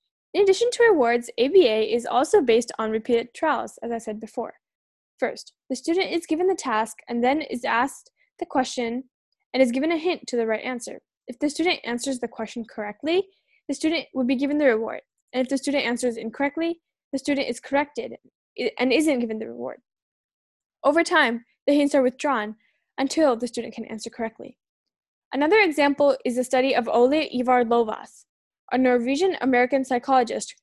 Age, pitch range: 10-29, 240-310 Hz